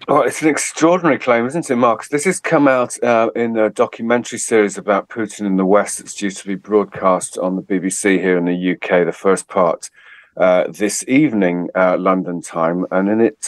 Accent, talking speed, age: British, 205 wpm, 50-69